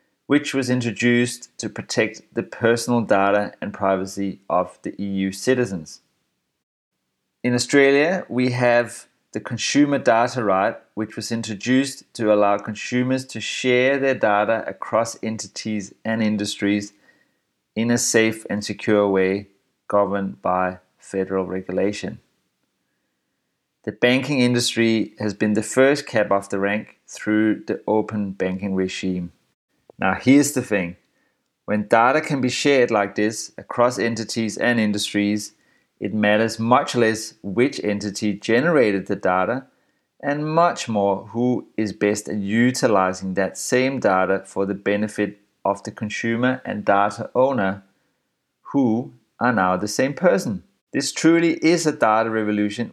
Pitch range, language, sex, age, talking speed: 100-120 Hz, English, male, 30-49, 135 wpm